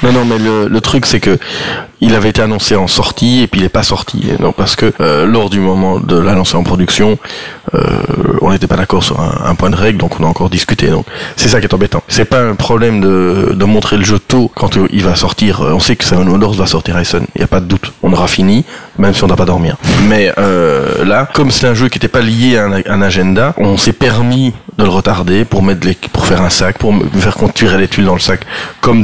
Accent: French